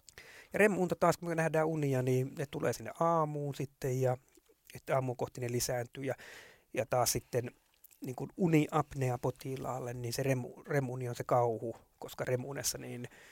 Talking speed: 150 wpm